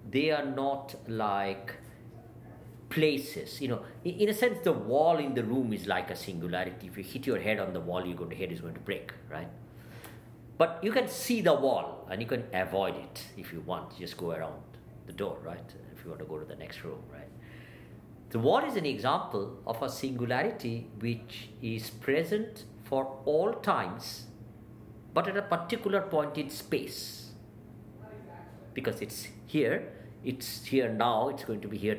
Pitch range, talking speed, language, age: 110-155 Hz, 180 wpm, English, 50-69